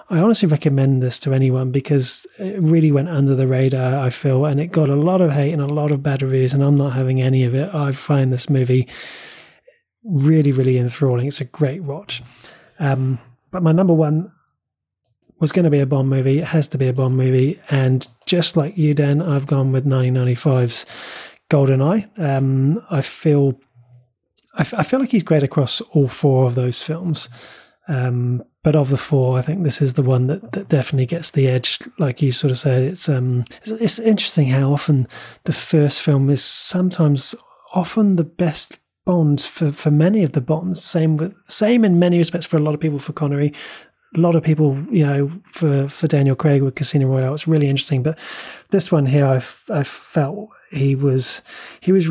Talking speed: 200 wpm